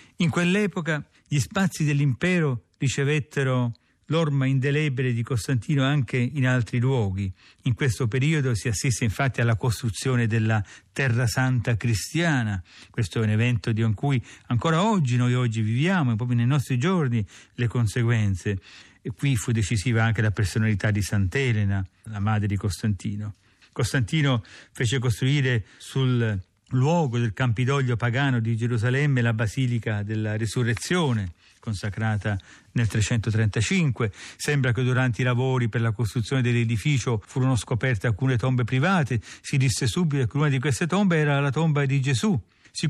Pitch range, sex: 115-140 Hz, male